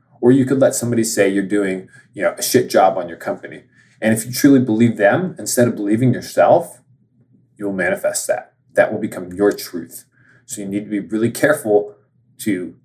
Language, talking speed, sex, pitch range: English, 185 wpm, male, 105-125 Hz